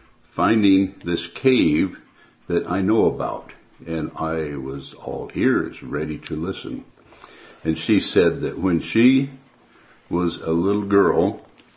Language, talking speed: English, 125 wpm